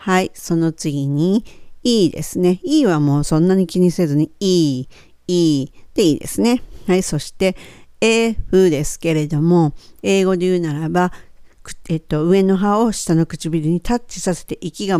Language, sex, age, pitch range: Japanese, female, 50-69, 145-185 Hz